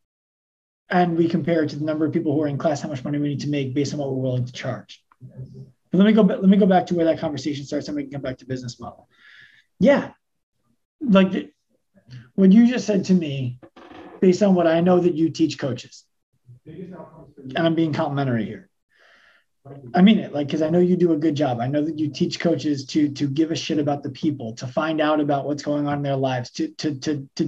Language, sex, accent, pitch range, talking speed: English, male, American, 130-170 Hz, 245 wpm